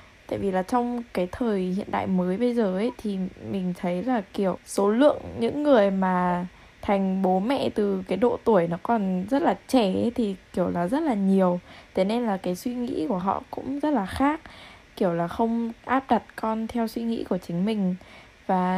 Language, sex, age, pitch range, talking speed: Vietnamese, female, 10-29, 190-245 Hz, 210 wpm